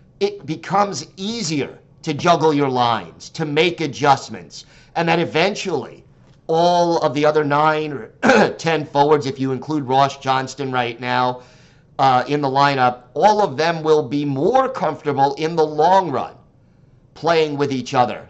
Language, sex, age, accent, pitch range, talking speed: English, male, 50-69, American, 130-160 Hz, 155 wpm